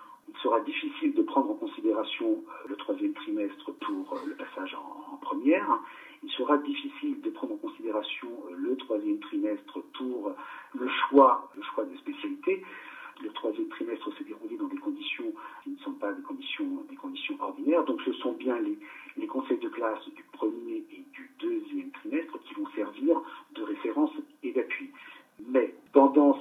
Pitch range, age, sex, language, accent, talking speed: 290-330 Hz, 50-69, male, French, French, 165 wpm